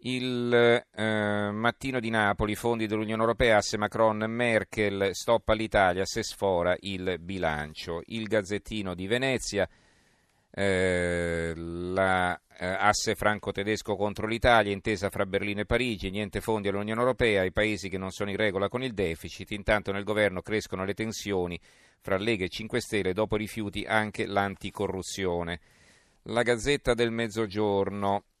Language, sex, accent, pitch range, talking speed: Italian, male, native, 95-110 Hz, 140 wpm